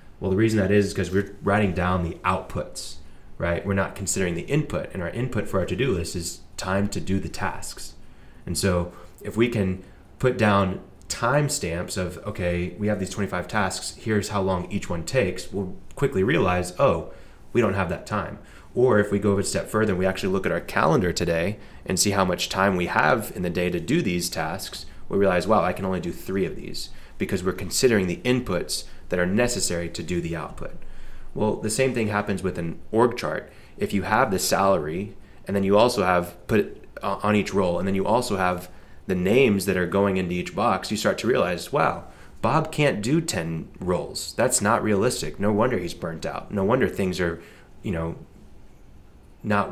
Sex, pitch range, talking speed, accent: male, 90-105 Hz, 210 wpm, American